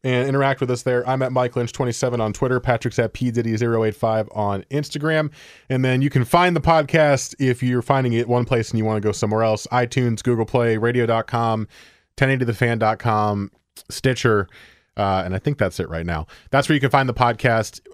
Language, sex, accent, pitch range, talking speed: English, male, American, 100-135 Hz, 200 wpm